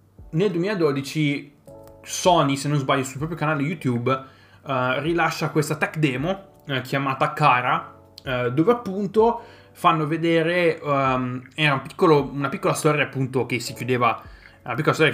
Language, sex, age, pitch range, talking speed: Italian, male, 20-39, 120-155 Hz, 145 wpm